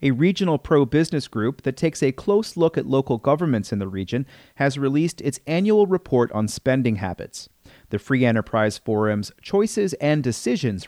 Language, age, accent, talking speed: English, 40-59, American, 165 wpm